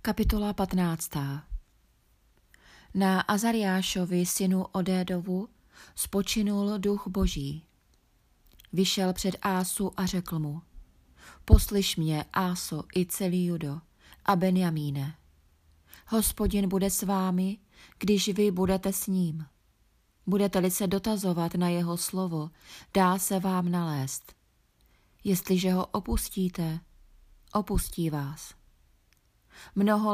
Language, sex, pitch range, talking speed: Czech, female, 170-200 Hz, 95 wpm